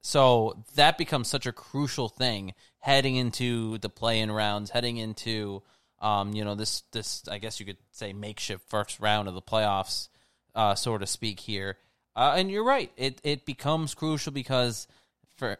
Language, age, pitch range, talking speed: English, 20-39, 105-120 Hz, 175 wpm